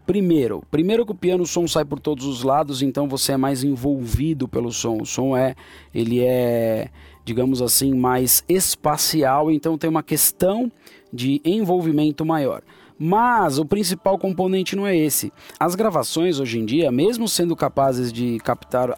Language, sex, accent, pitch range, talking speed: Portuguese, male, Brazilian, 125-175 Hz, 165 wpm